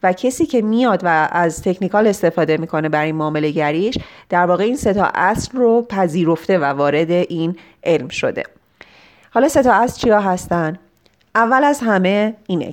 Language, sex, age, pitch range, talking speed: Persian, female, 30-49, 175-220 Hz, 150 wpm